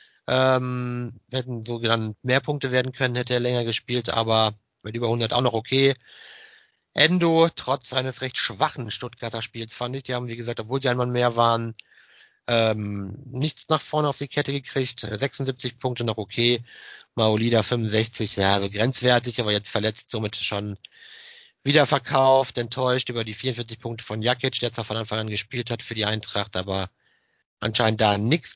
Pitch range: 115-140 Hz